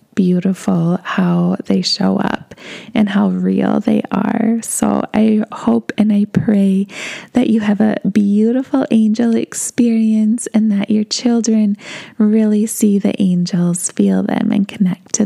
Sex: female